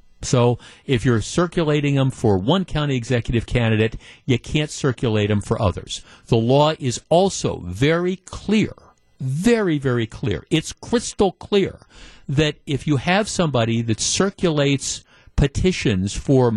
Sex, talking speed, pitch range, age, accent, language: male, 135 wpm, 115-155 Hz, 50-69, American, English